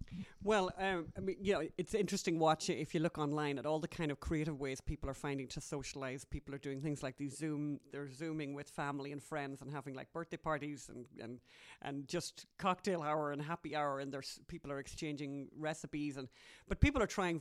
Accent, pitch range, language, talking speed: Irish, 140-165 Hz, English, 220 wpm